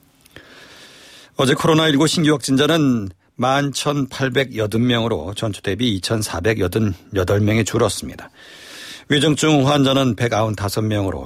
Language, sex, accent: Korean, male, native